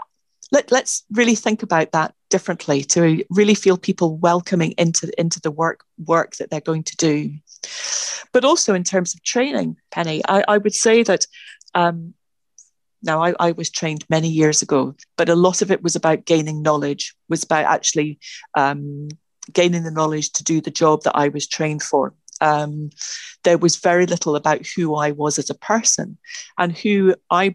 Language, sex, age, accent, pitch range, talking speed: English, female, 40-59, British, 155-195 Hz, 180 wpm